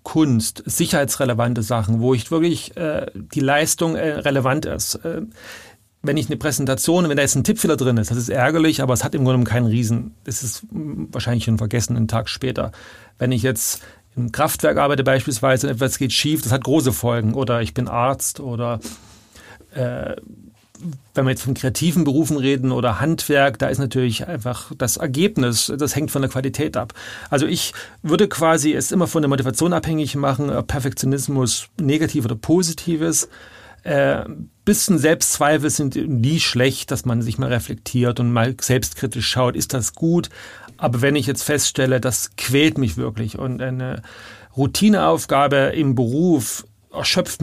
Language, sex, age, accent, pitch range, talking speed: German, male, 40-59, German, 120-150 Hz, 170 wpm